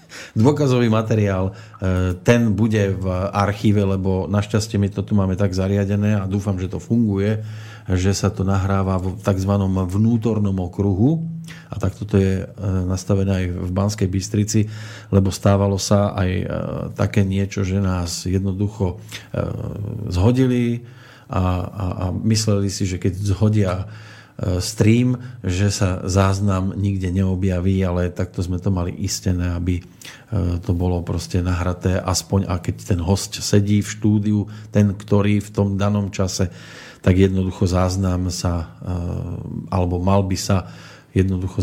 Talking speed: 135 wpm